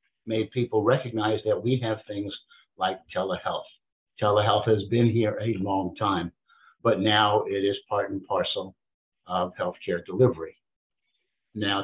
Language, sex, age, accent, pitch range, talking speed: English, male, 60-79, American, 100-120 Hz, 135 wpm